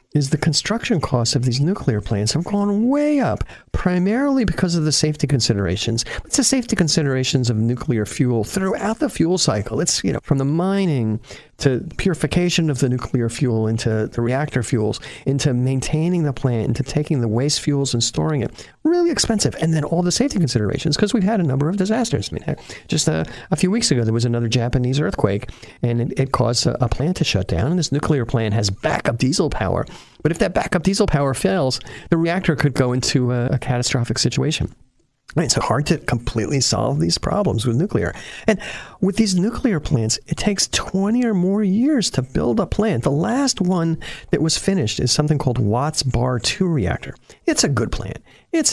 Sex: male